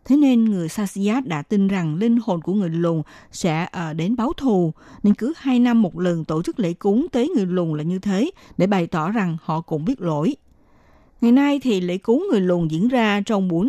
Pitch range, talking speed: 170-235 Hz, 225 wpm